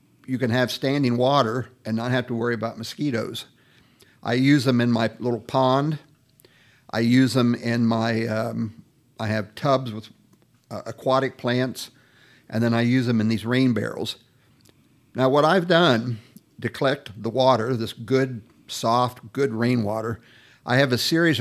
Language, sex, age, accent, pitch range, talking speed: English, male, 50-69, American, 120-135 Hz, 165 wpm